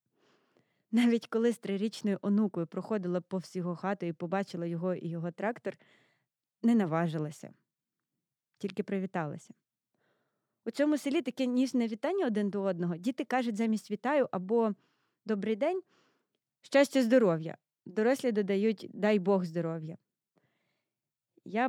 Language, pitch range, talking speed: Ukrainian, 175-225 Hz, 120 wpm